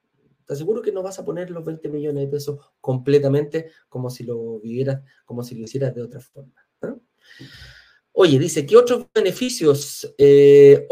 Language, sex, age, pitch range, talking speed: Spanish, male, 40-59, 140-215 Hz, 150 wpm